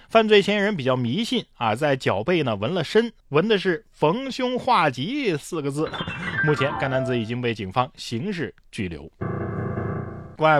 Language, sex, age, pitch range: Chinese, male, 20-39, 130-200 Hz